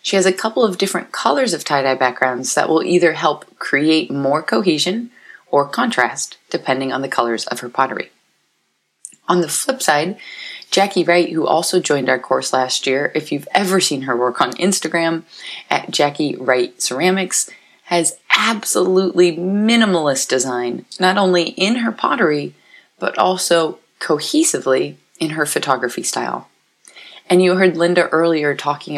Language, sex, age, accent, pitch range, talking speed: English, female, 30-49, American, 145-185 Hz, 150 wpm